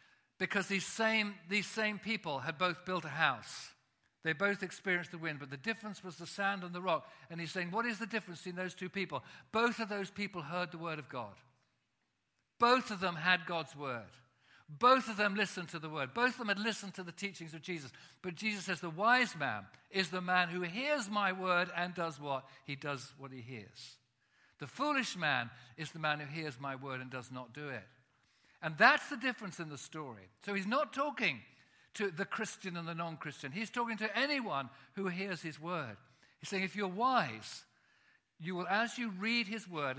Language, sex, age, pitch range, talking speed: English, male, 50-69, 150-205 Hz, 210 wpm